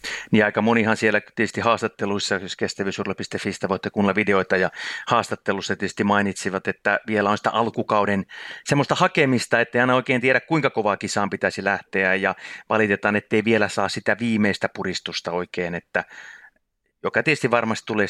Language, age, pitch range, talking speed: Finnish, 30-49, 95-115 Hz, 155 wpm